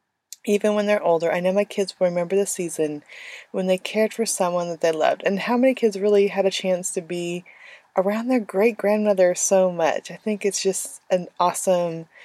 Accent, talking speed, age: American, 205 wpm, 20-39